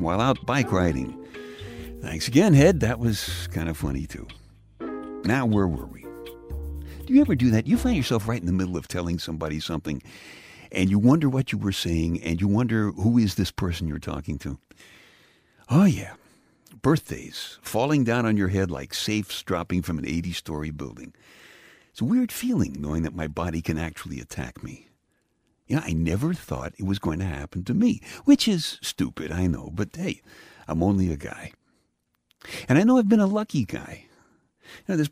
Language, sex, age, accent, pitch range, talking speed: English, male, 60-79, American, 80-115 Hz, 185 wpm